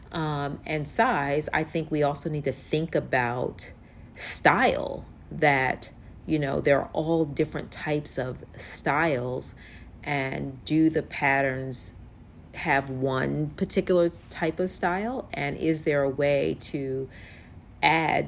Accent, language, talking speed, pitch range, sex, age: American, English, 130 wpm, 130-160 Hz, female, 40-59